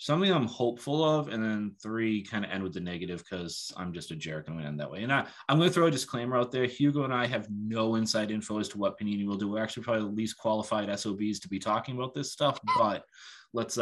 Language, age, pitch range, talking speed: English, 20-39, 95-120 Hz, 265 wpm